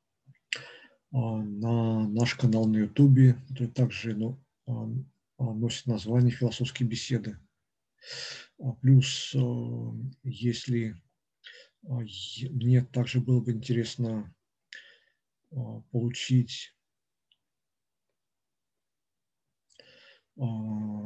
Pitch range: 110-130 Hz